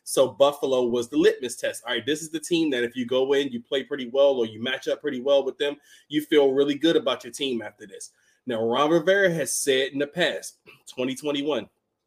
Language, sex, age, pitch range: English, male, 20-39, 120-155 Hz